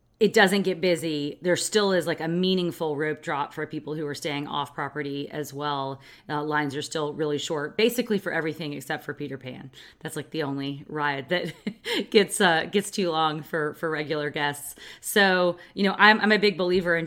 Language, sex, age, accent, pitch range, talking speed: English, female, 30-49, American, 150-180 Hz, 205 wpm